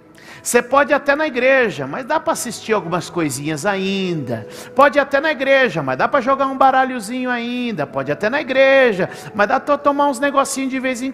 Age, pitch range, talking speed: 50-69, 220-285 Hz, 195 wpm